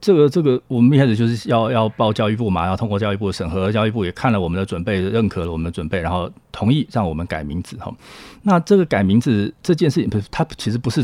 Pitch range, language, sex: 95-130 Hz, Chinese, male